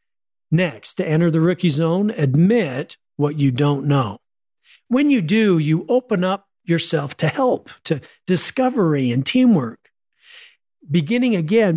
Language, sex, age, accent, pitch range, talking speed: English, male, 50-69, American, 140-190 Hz, 135 wpm